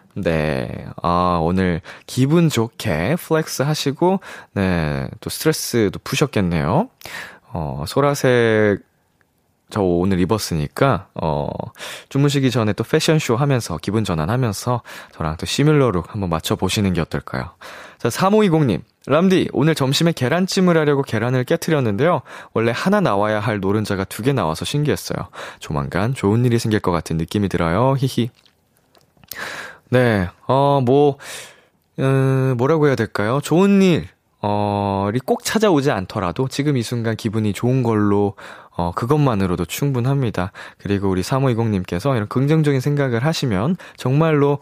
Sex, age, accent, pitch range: male, 20-39, native, 100-140 Hz